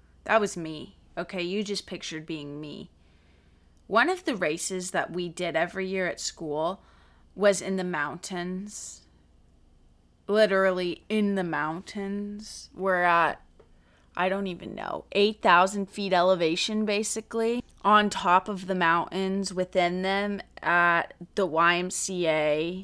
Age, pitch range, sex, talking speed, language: 20-39, 150-195 Hz, female, 125 wpm, English